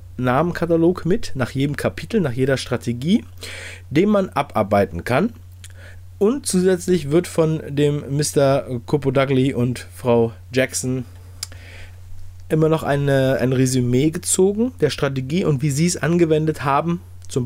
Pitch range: 100-140 Hz